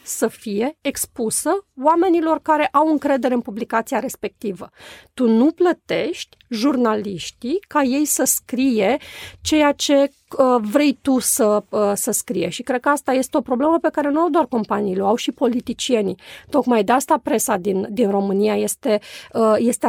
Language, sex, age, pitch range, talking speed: Romanian, female, 30-49, 220-280 Hz, 150 wpm